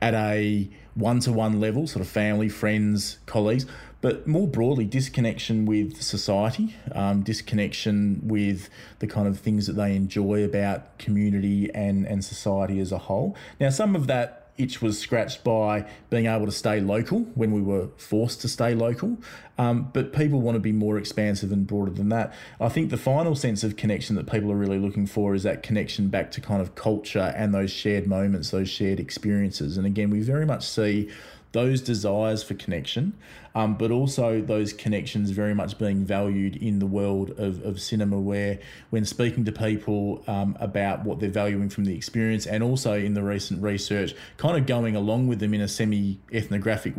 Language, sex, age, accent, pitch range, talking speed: English, male, 30-49, Australian, 100-115 Hz, 185 wpm